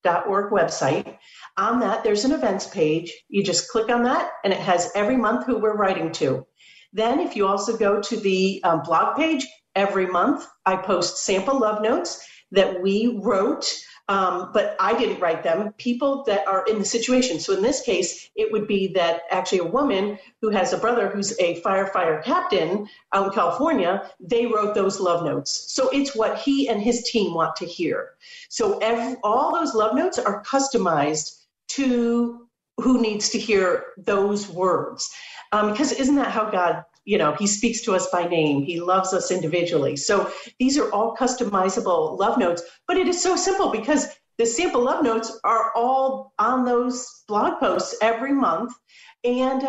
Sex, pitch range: female, 195-255 Hz